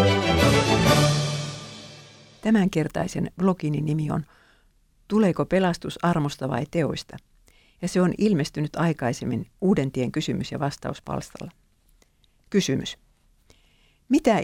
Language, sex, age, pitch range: Finnish, female, 50-69, 145-190 Hz